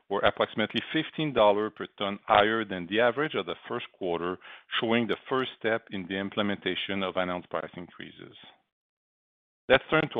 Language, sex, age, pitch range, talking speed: English, male, 40-59, 95-115 Hz, 160 wpm